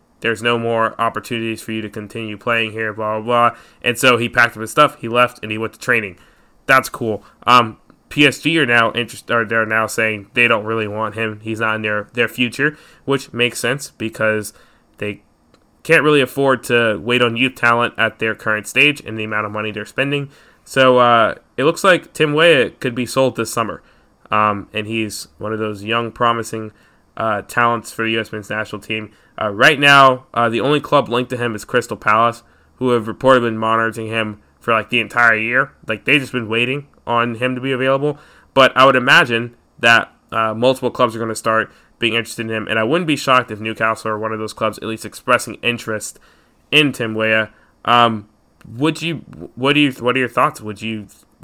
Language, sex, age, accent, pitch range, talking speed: English, male, 20-39, American, 110-125 Hz, 210 wpm